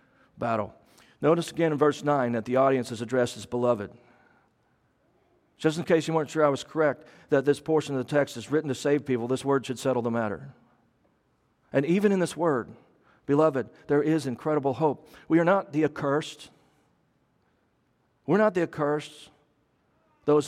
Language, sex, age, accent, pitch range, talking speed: English, male, 40-59, American, 125-155 Hz, 175 wpm